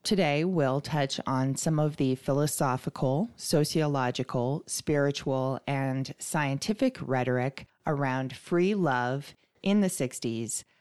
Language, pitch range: English, 130-175 Hz